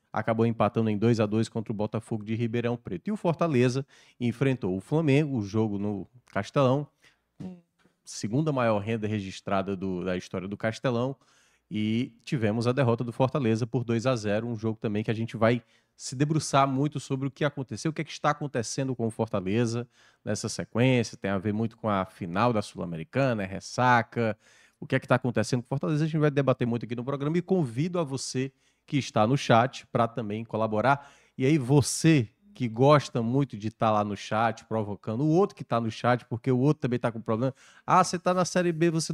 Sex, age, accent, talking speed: male, 20-39, Brazilian, 205 wpm